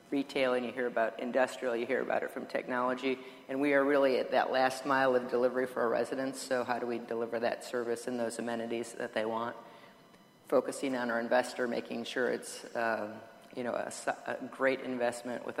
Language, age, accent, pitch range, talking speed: English, 40-59, American, 115-130 Hz, 205 wpm